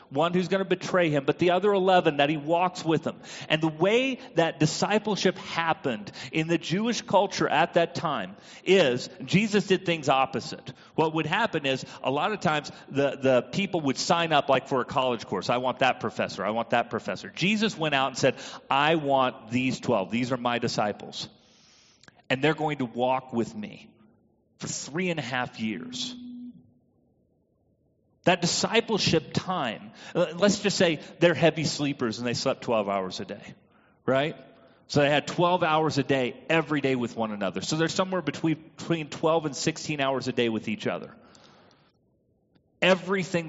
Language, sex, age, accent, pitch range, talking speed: English, male, 40-59, American, 135-185 Hz, 180 wpm